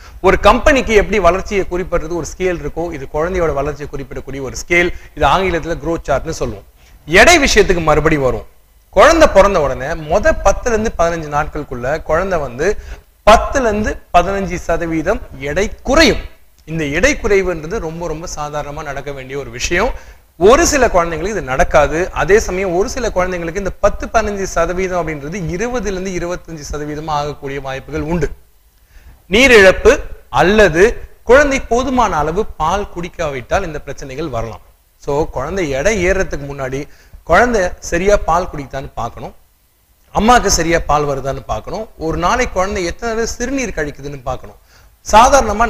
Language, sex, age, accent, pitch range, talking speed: Tamil, male, 30-49, native, 145-200 Hz, 135 wpm